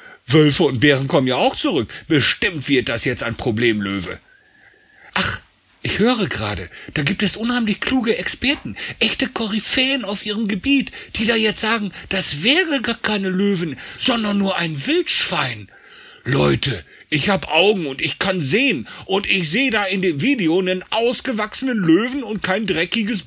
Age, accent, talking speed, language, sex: 60-79, German, 160 wpm, German, male